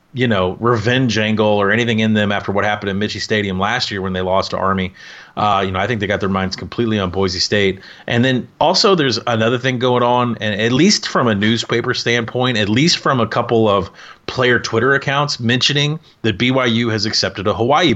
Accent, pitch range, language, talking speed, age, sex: American, 100-120 Hz, English, 215 wpm, 30-49, male